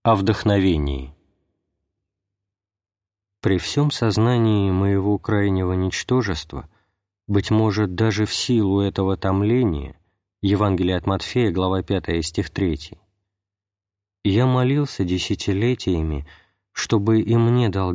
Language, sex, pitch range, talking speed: Russian, male, 90-105 Hz, 95 wpm